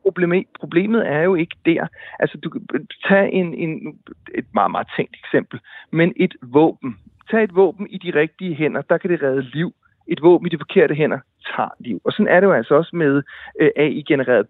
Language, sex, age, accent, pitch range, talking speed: Danish, male, 30-49, native, 135-180 Hz, 200 wpm